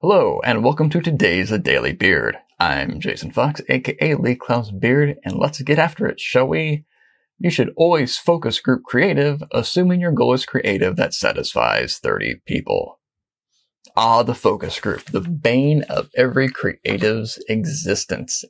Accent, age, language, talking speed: American, 30-49, English, 150 wpm